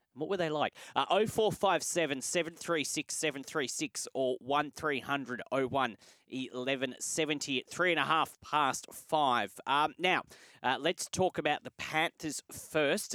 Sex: male